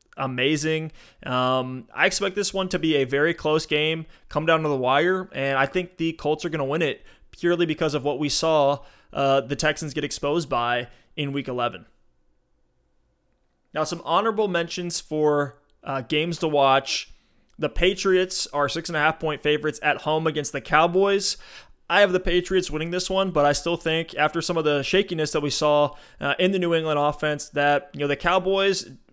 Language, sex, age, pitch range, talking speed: English, male, 20-39, 145-175 Hz, 195 wpm